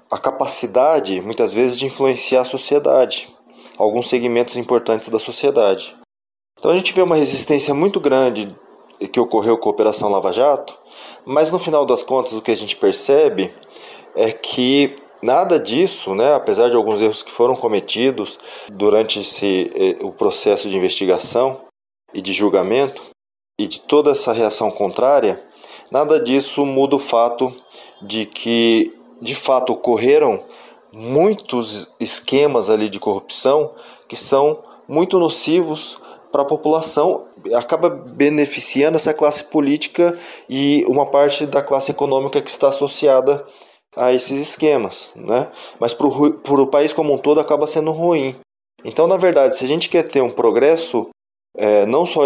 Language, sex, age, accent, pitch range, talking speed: Portuguese, male, 20-39, Brazilian, 120-160 Hz, 145 wpm